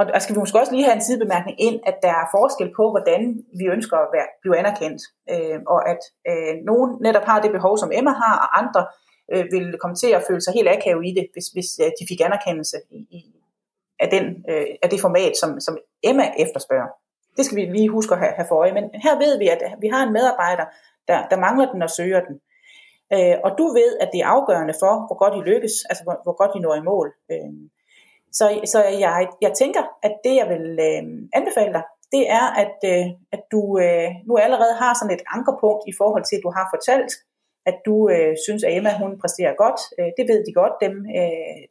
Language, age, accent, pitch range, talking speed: Danish, 30-49, native, 180-240 Hz, 230 wpm